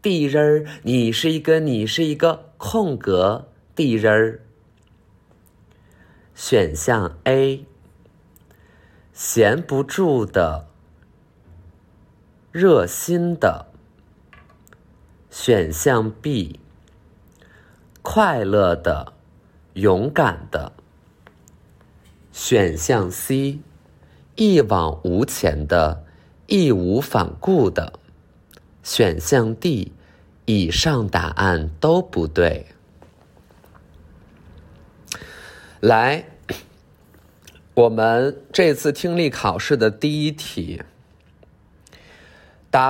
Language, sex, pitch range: Chinese, male, 85-135 Hz